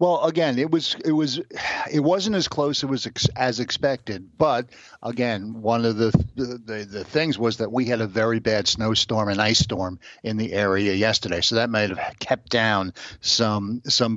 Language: English